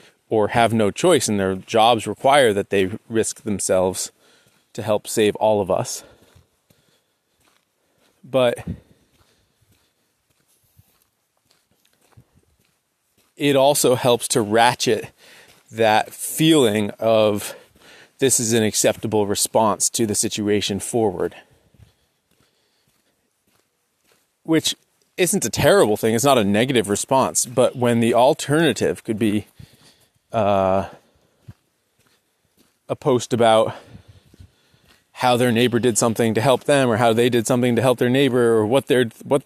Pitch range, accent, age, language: 110-135 Hz, American, 30-49, English